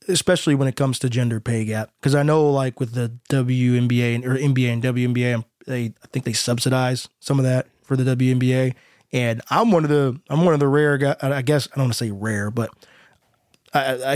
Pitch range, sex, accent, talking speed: 125-155 Hz, male, American, 215 wpm